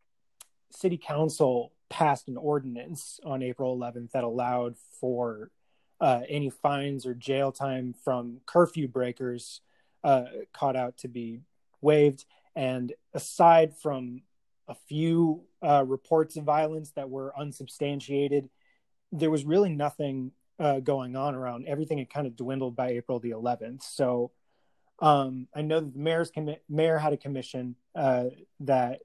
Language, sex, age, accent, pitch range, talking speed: English, male, 30-49, American, 130-150 Hz, 145 wpm